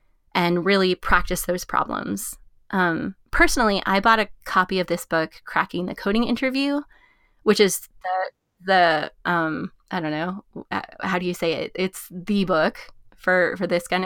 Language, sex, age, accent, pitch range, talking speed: English, female, 20-39, American, 180-235 Hz, 160 wpm